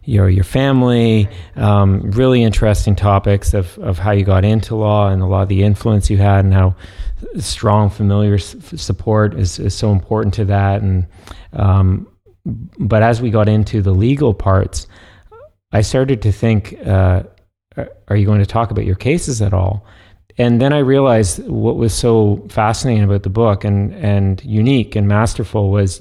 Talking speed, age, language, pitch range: 180 wpm, 30-49, English, 100-115 Hz